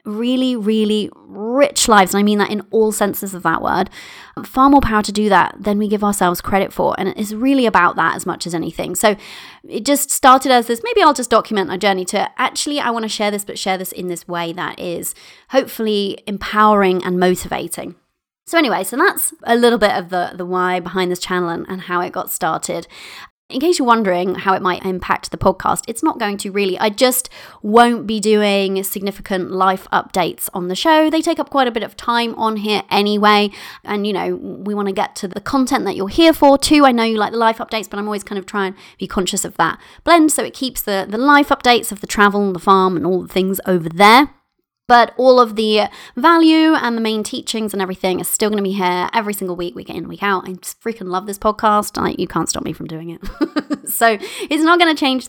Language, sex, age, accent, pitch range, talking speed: English, female, 20-39, British, 190-260 Hz, 235 wpm